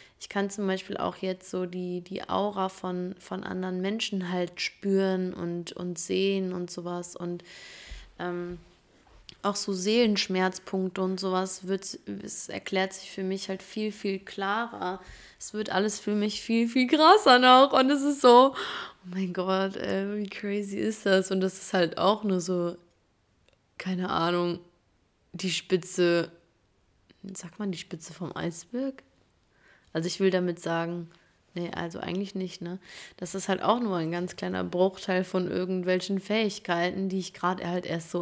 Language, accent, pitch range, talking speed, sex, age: German, German, 175-195 Hz, 165 wpm, female, 20-39